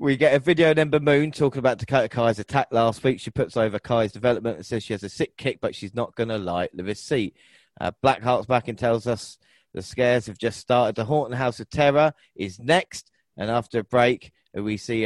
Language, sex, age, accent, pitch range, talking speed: English, male, 30-49, British, 110-130 Hz, 225 wpm